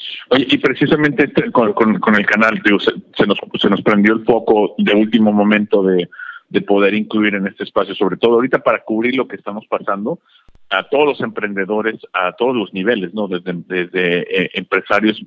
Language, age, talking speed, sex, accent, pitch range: English, 50-69, 195 wpm, male, Mexican, 100-115 Hz